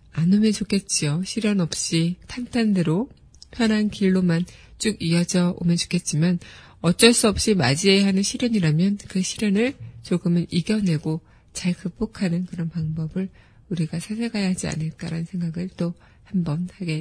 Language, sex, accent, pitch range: Korean, female, native, 170-205 Hz